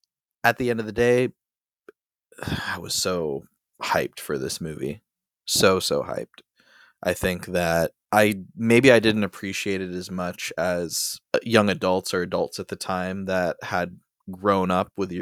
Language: English